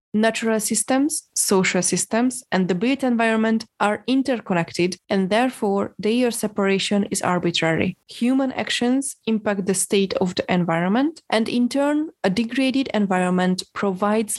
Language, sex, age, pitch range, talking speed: English, female, 20-39, 190-240 Hz, 130 wpm